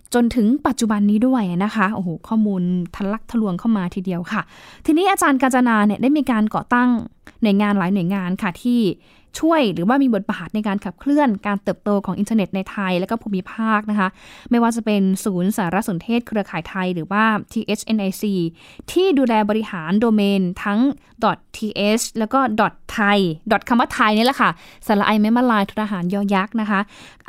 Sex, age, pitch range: female, 10-29, 200-245 Hz